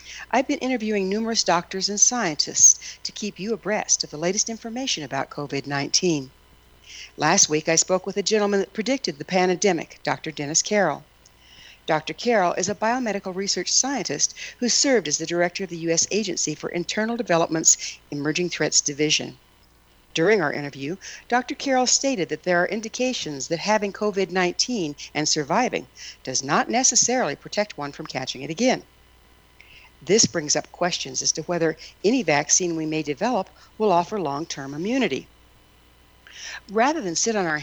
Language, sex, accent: English, female, American